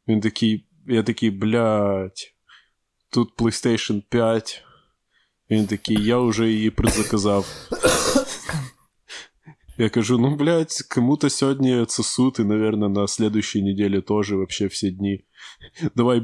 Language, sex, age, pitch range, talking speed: Ukrainian, male, 20-39, 105-130 Hz, 105 wpm